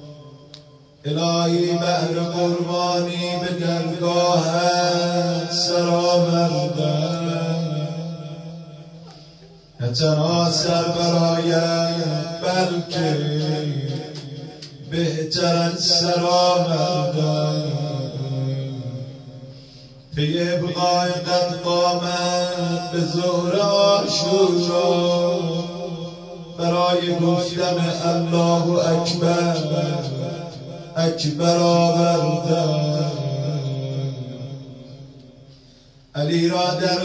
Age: 30-49